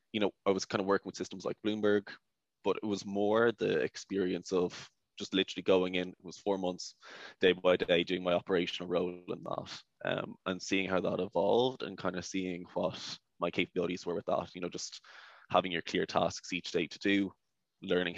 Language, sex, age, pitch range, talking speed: English, male, 20-39, 90-100 Hz, 210 wpm